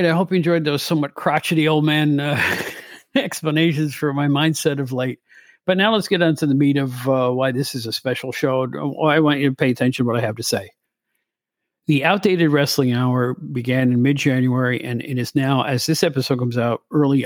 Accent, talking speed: American, 210 wpm